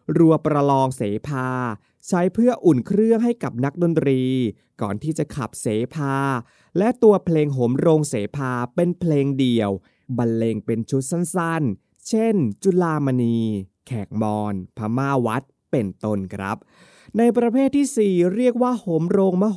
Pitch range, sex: 120-180 Hz, male